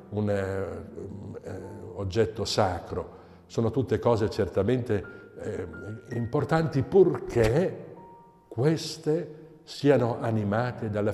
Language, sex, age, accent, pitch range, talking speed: Italian, male, 60-79, native, 100-140 Hz, 80 wpm